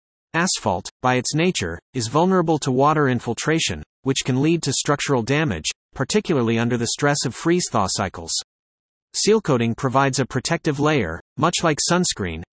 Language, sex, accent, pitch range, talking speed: English, male, American, 115-160 Hz, 150 wpm